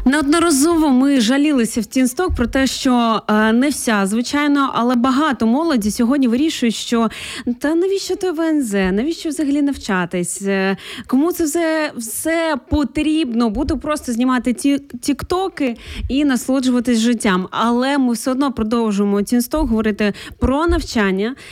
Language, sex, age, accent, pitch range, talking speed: Ukrainian, female, 20-39, native, 215-275 Hz, 130 wpm